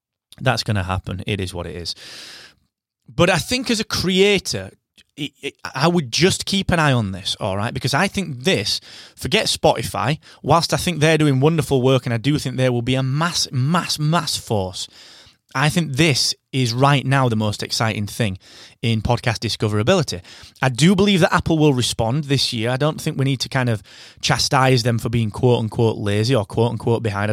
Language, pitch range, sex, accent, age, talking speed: English, 110-140 Hz, male, British, 20-39, 195 wpm